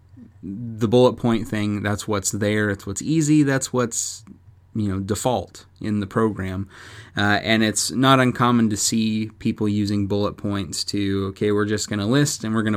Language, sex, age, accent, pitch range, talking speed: English, male, 20-39, American, 100-120 Hz, 185 wpm